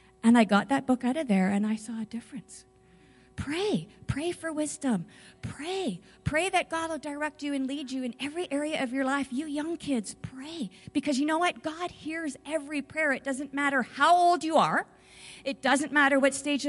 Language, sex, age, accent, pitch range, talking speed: English, female, 40-59, American, 210-280 Hz, 205 wpm